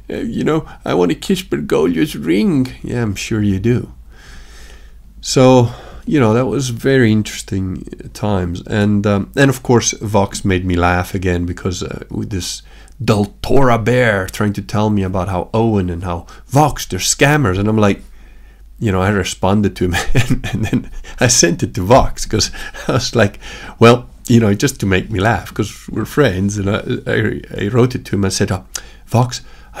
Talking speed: 185 wpm